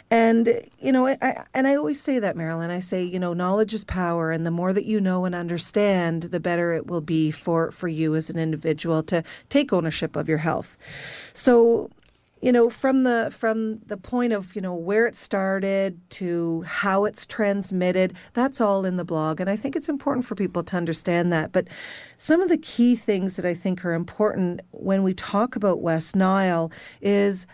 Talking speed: 200 wpm